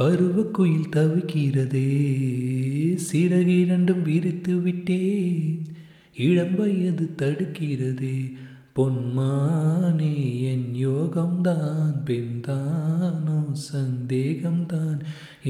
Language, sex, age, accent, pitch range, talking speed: Tamil, male, 30-49, native, 140-190 Hz, 55 wpm